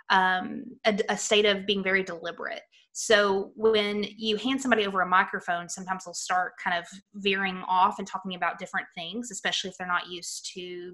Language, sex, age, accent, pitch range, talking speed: English, female, 20-39, American, 180-225 Hz, 185 wpm